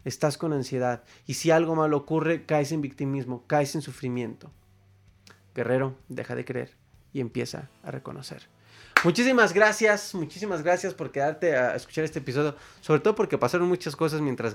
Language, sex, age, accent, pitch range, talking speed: Spanish, male, 30-49, Mexican, 120-155 Hz, 160 wpm